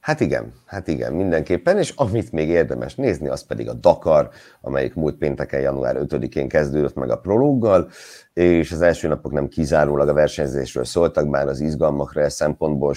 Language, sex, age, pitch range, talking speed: Hungarian, male, 50-69, 70-80 Hz, 165 wpm